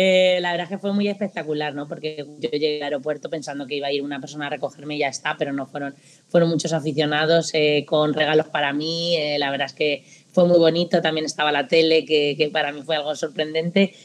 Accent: Spanish